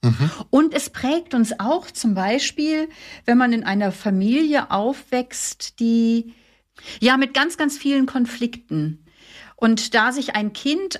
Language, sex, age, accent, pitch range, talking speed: German, female, 50-69, German, 215-255 Hz, 135 wpm